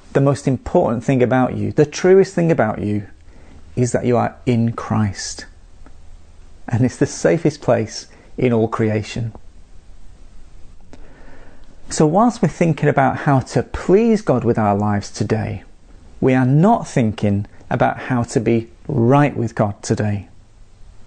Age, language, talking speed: 40-59, English, 140 wpm